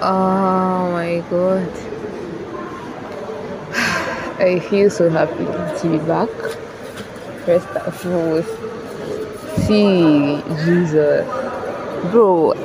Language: English